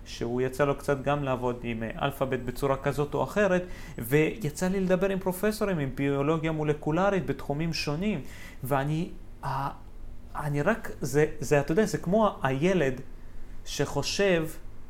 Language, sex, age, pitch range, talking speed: Hebrew, male, 30-49, 130-180 Hz, 130 wpm